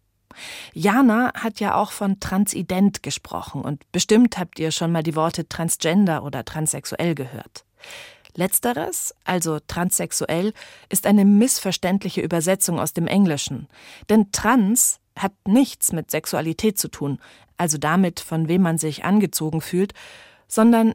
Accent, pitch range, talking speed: German, 155-210 Hz, 130 wpm